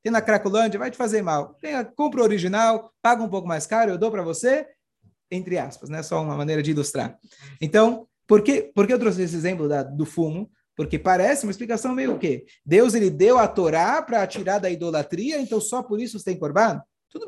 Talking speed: 220 wpm